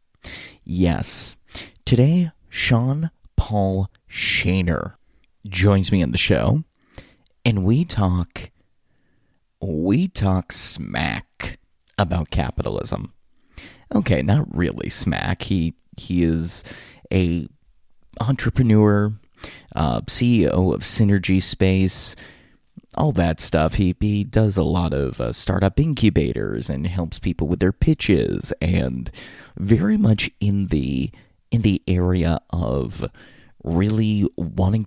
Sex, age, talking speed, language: male, 30-49, 105 wpm, English